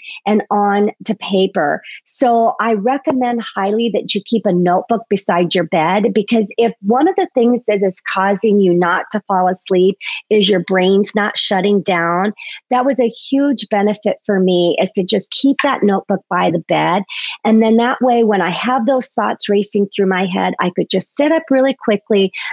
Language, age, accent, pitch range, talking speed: English, 40-59, American, 190-235 Hz, 190 wpm